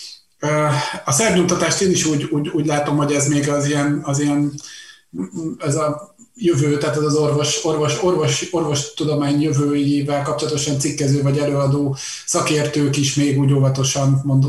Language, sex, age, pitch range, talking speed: Hungarian, male, 30-49, 135-150 Hz, 135 wpm